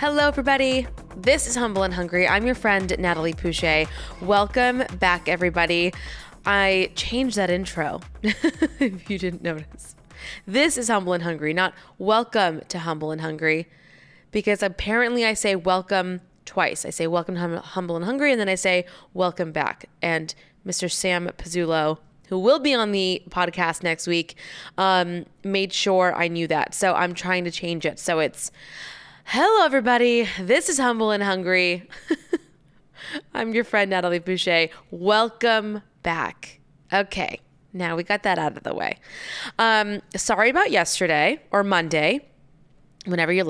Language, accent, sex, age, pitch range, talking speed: English, American, female, 20-39, 170-215 Hz, 150 wpm